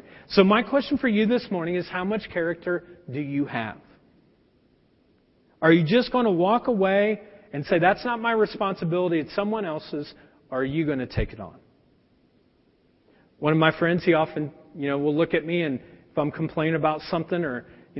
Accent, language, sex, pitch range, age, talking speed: American, English, male, 160-240 Hz, 40-59, 195 wpm